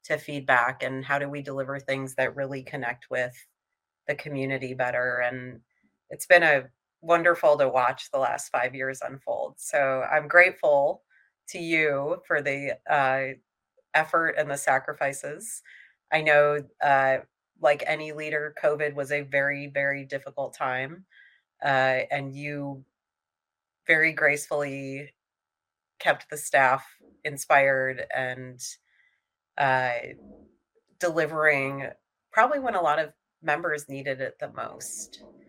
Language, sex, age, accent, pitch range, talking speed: English, female, 30-49, American, 135-165 Hz, 125 wpm